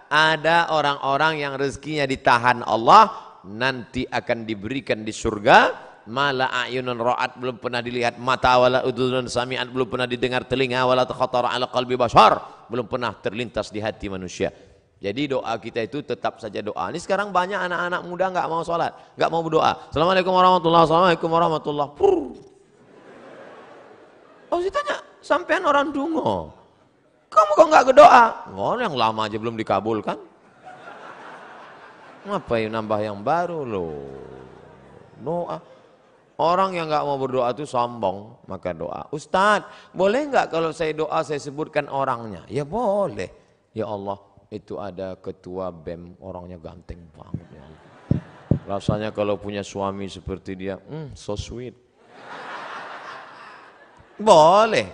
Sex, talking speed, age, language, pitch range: male, 125 wpm, 30-49, Indonesian, 110-165 Hz